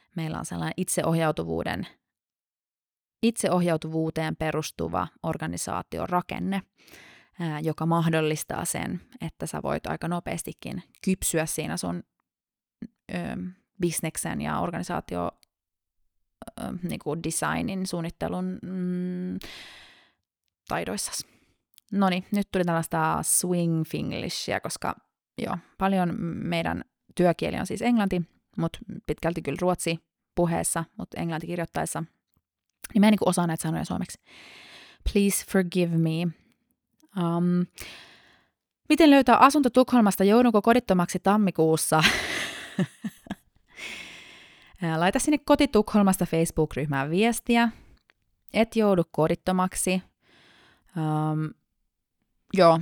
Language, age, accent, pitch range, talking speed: Finnish, 20-39, native, 160-195 Hz, 85 wpm